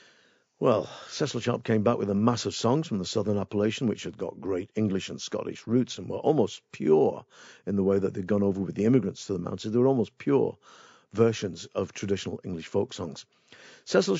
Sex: male